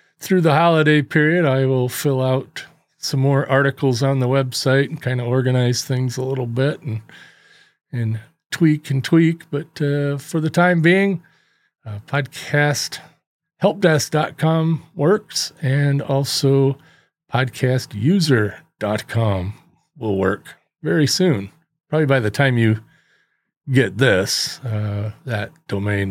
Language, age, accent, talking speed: English, 40-59, American, 120 wpm